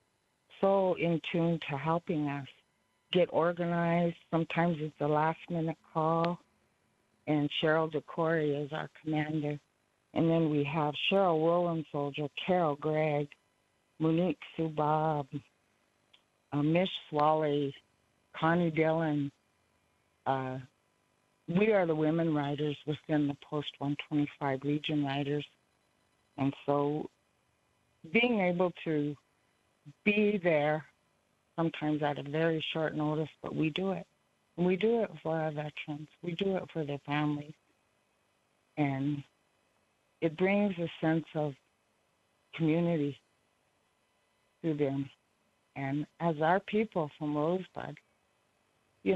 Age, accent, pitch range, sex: 50-69, American, 145-170 Hz, female